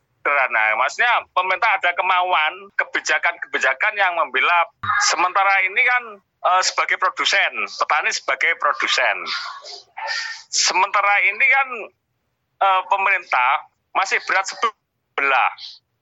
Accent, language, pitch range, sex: native, Indonesian, 180-240 Hz, male